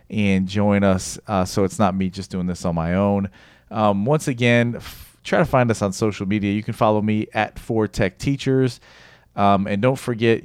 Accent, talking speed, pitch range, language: American, 205 wpm, 95-115 Hz, English